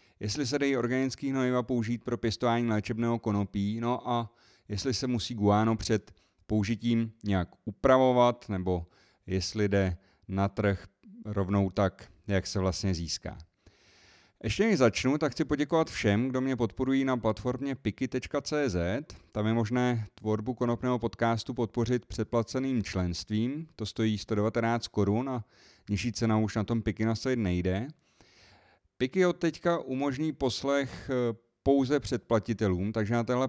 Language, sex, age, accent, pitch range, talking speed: Czech, male, 30-49, native, 100-120 Hz, 135 wpm